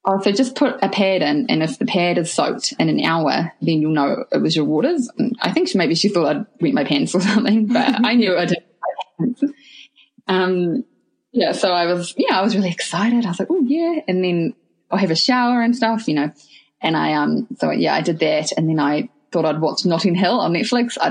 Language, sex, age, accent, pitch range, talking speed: English, female, 20-39, Australian, 160-245 Hz, 240 wpm